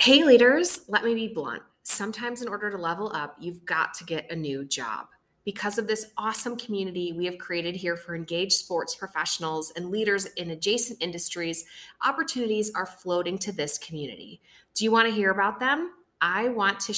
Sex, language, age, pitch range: female, English, 30-49, 170-220 Hz